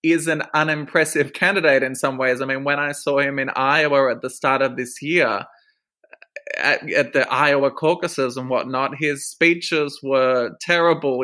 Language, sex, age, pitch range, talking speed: English, male, 20-39, 125-145 Hz, 170 wpm